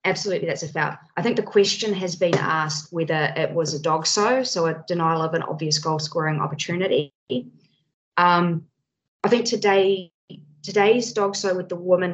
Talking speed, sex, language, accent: 175 wpm, female, English, Australian